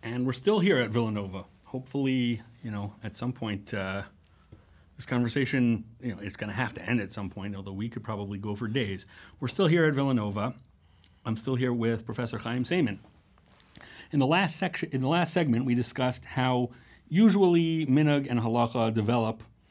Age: 40-59